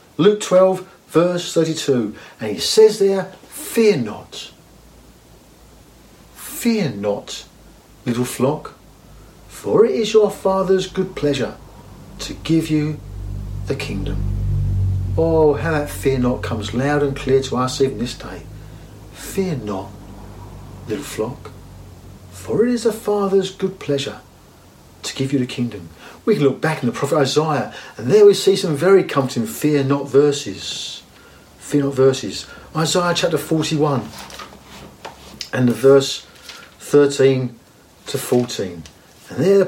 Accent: British